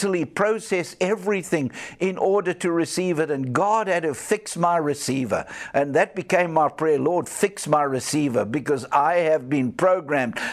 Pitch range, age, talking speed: 145-200 Hz, 60-79, 160 wpm